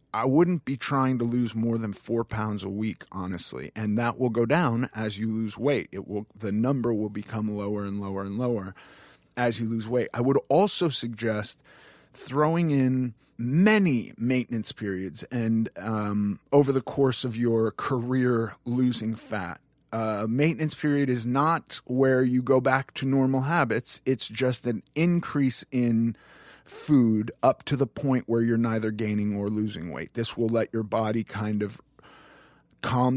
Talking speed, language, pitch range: 170 wpm, English, 110-130 Hz